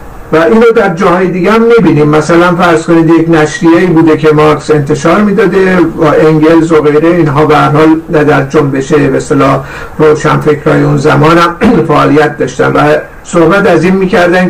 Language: Persian